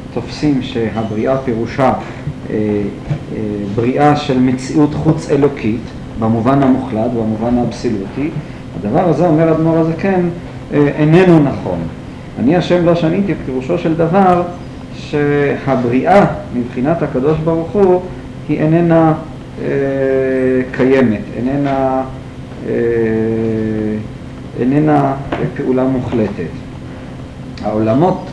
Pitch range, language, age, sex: 120-150 Hz, Hebrew, 50-69, male